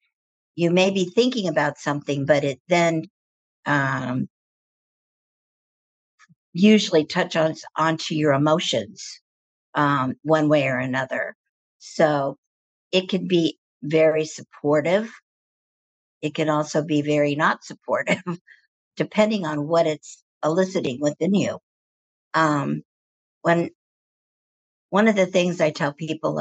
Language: English